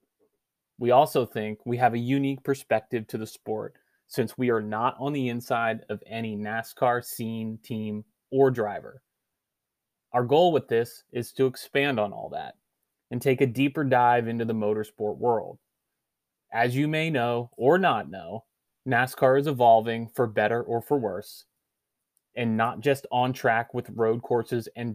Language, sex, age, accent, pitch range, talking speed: English, male, 30-49, American, 110-125 Hz, 165 wpm